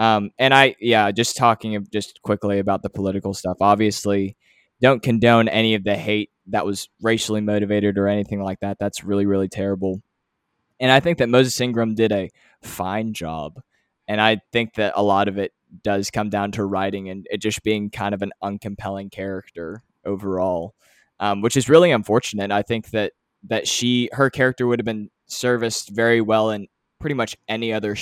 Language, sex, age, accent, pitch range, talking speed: English, male, 20-39, American, 100-110 Hz, 190 wpm